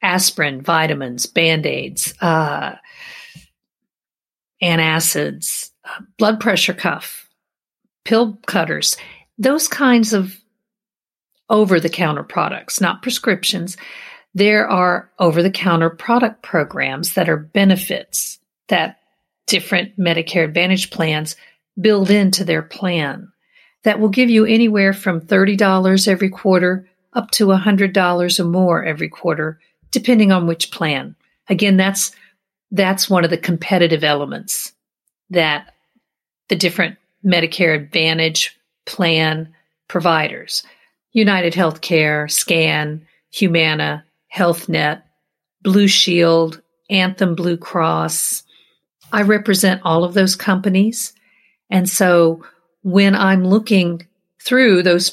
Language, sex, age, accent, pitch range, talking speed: English, female, 50-69, American, 170-200 Hz, 100 wpm